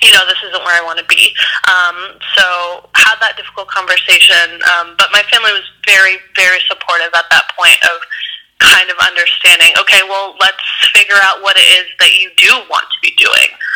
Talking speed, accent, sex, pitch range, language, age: 195 wpm, American, female, 175-230 Hz, English, 20-39